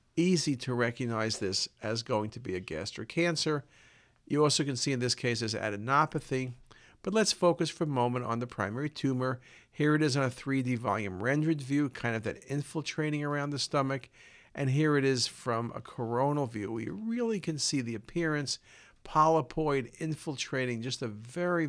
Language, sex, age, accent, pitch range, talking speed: English, male, 50-69, American, 120-155 Hz, 180 wpm